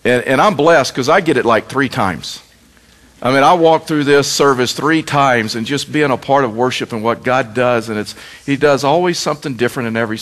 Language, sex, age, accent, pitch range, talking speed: English, male, 50-69, American, 125-160 Hz, 235 wpm